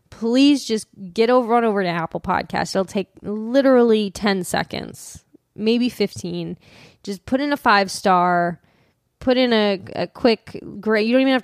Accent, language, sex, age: American, English, female, 10-29